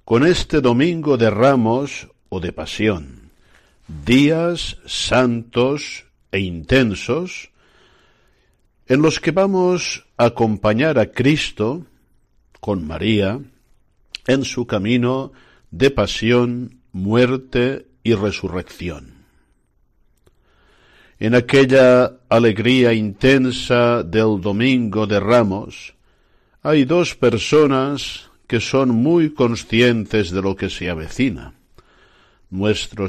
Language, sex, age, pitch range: Spanish, male, 60-79, 95-130 Hz